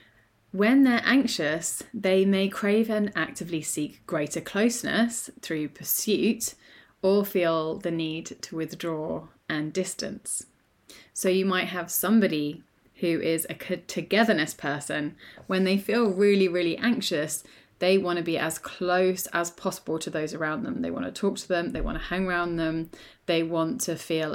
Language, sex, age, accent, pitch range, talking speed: English, female, 20-39, British, 160-195 Hz, 160 wpm